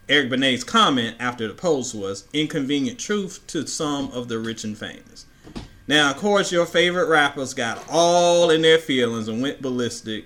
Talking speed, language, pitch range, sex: 175 wpm, English, 110-150 Hz, male